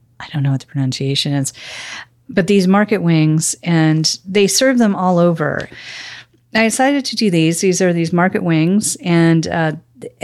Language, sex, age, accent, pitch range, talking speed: English, female, 40-59, American, 150-185 Hz, 170 wpm